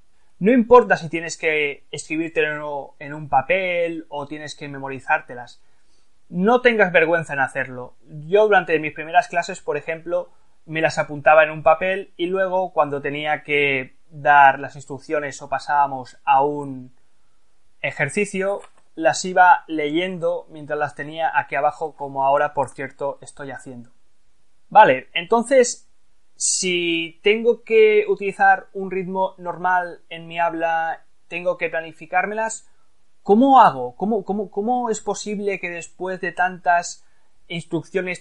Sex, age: male, 20-39